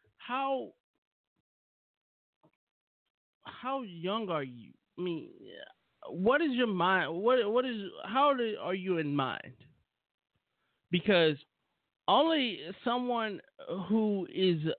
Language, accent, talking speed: English, American, 95 wpm